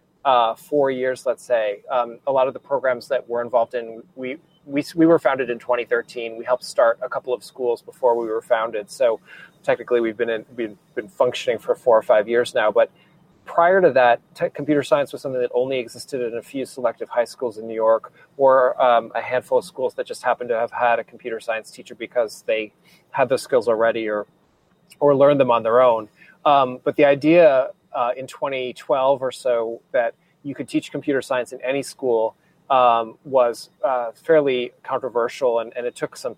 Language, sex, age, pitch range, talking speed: English, male, 30-49, 120-160 Hz, 215 wpm